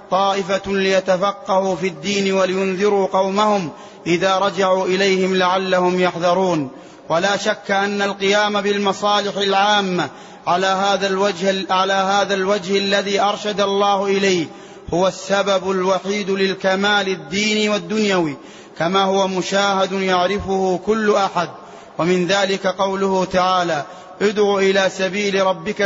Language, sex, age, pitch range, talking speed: Arabic, male, 30-49, 190-200 Hz, 105 wpm